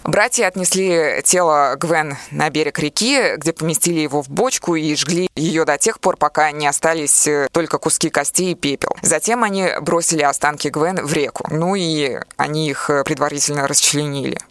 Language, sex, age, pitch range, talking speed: Russian, female, 20-39, 150-180 Hz, 160 wpm